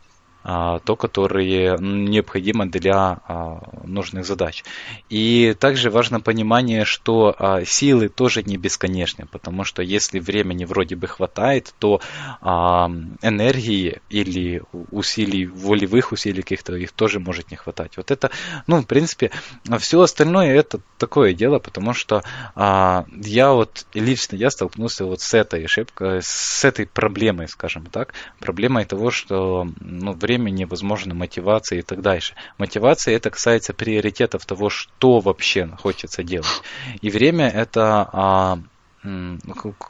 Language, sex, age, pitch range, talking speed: Russian, male, 20-39, 95-115 Hz, 130 wpm